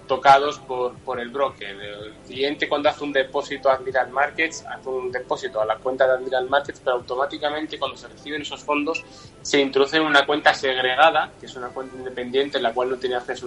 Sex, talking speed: male, 210 wpm